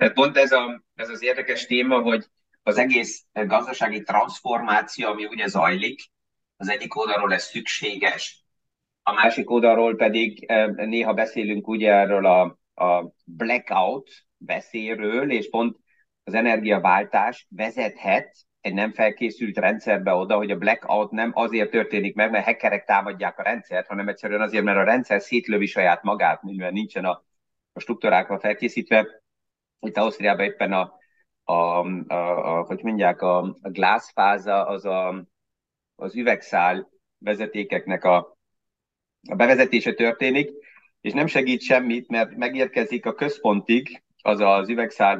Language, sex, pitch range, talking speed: Hungarian, male, 100-120 Hz, 130 wpm